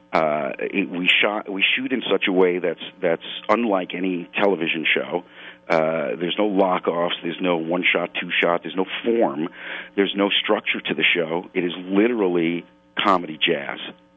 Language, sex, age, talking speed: English, male, 50-69, 160 wpm